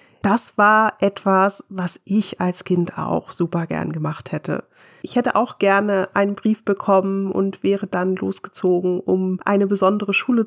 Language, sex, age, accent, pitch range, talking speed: German, female, 30-49, German, 175-205 Hz, 155 wpm